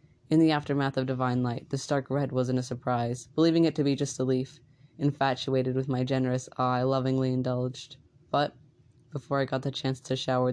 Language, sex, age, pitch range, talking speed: English, female, 10-29, 125-140 Hz, 200 wpm